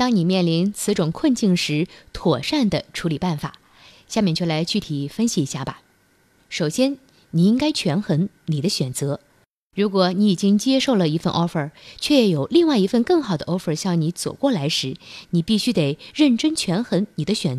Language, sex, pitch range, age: Chinese, female, 160-240 Hz, 20-39